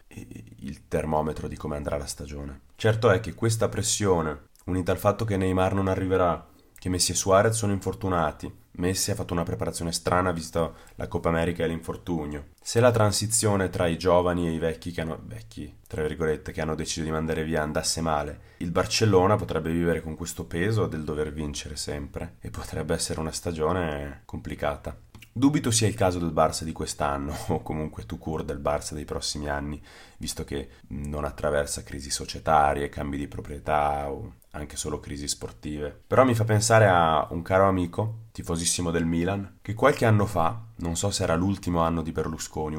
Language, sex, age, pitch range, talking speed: Italian, male, 30-49, 75-95 Hz, 180 wpm